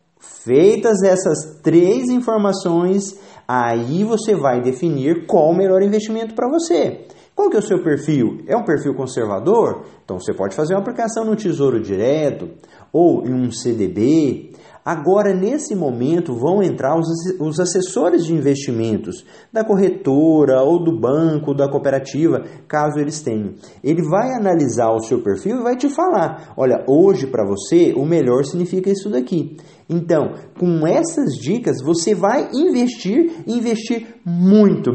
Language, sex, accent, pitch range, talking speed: English, male, Brazilian, 150-220 Hz, 145 wpm